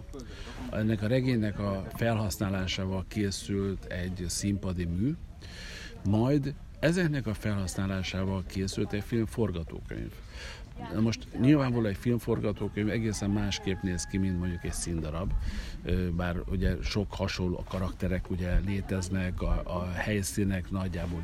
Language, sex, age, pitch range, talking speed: Hungarian, male, 50-69, 90-110 Hz, 110 wpm